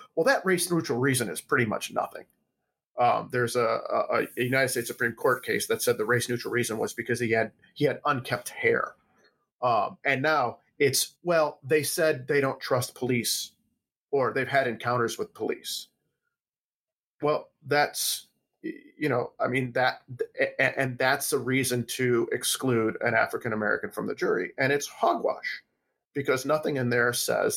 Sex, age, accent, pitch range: male, 40-59, American, 125-205 Hz